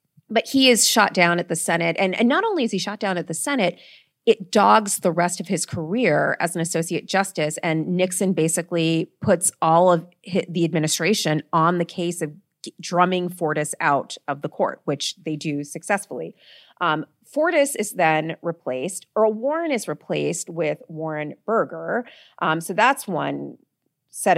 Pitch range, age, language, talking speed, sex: 160-200 Hz, 30-49, English, 170 wpm, female